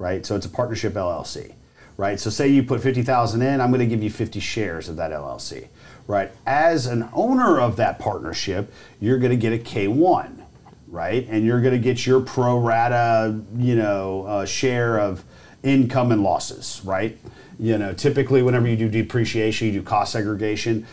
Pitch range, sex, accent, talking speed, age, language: 100-120 Hz, male, American, 185 wpm, 40-59, English